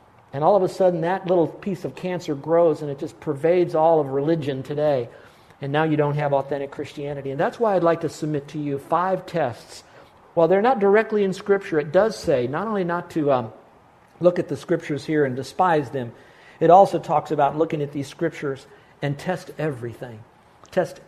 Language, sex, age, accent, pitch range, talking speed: English, male, 50-69, American, 140-180 Hz, 200 wpm